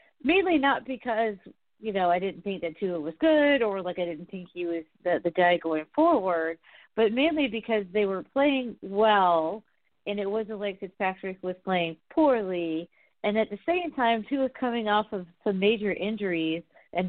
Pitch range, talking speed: 185-240 Hz, 185 wpm